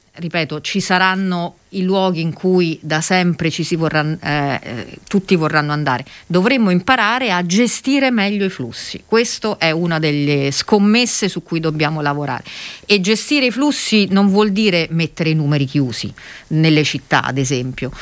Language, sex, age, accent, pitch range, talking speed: Italian, female, 40-59, native, 145-190 Hz, 155 wpm